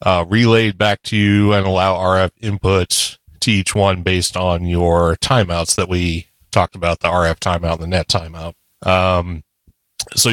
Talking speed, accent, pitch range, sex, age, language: 170 wpm, American, 85-105 Hz, male, 30-49, English